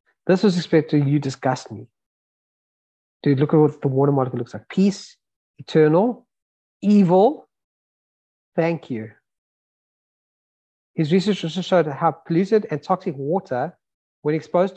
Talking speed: 125 wpm